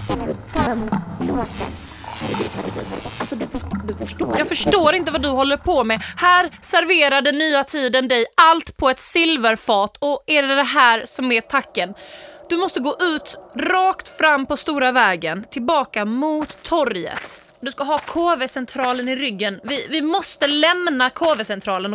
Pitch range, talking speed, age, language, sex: 220-300 Hz, 130 wpm, 20-39, Swedish, female